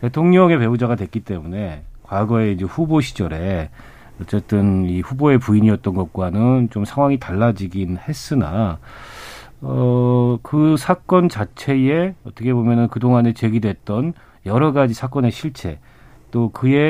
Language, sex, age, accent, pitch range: Korean, male, 40-59, native, 95-135 Hz